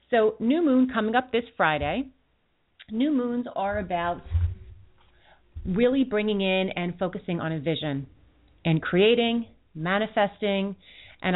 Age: 30-49